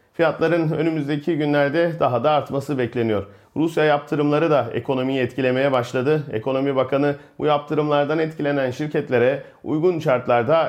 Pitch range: 125-160 Hz